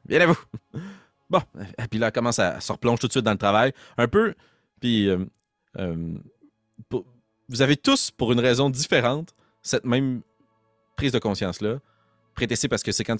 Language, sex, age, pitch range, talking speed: French, male, 30-49, 90-120 Hz, 175 wpm